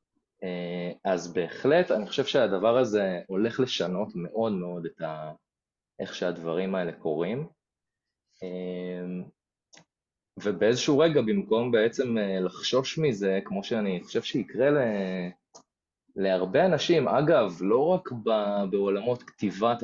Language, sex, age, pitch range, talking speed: Hebrew, male, 20-39, 90-115 Hz, 105 wpm